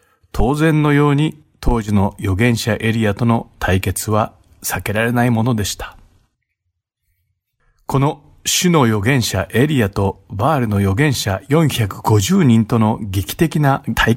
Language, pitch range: Japanese, 105-140 Hz